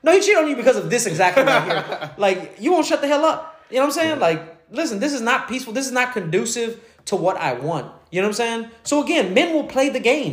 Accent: American